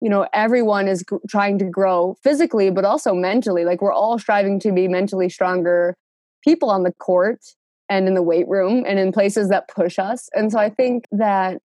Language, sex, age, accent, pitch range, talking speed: English, female, 20-39, American, 185-220 Hz, 205 wpm